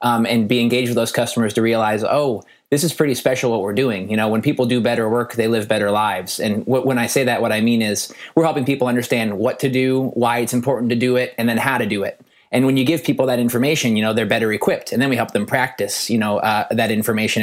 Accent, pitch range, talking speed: American, 115-130 Hz, 270 wpm